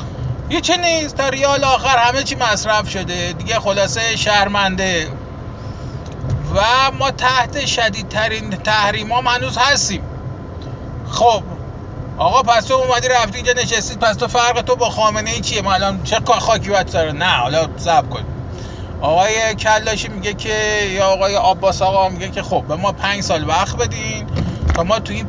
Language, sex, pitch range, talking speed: Persian, male, 190-240 Hz, 155 wpm